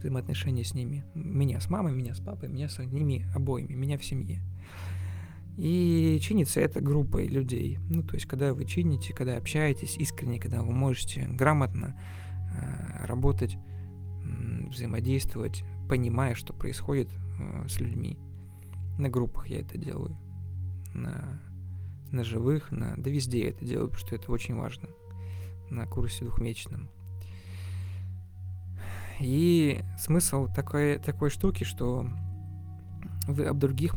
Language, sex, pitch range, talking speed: Russian, male, 90-130 Hz, 130 wpm